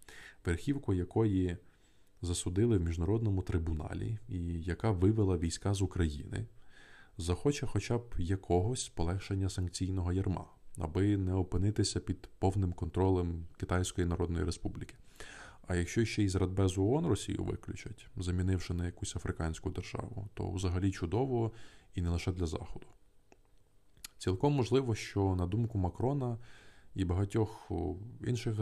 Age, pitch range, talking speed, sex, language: 20-39, 90-110 Hz, 125 wpm, male, Ukrainian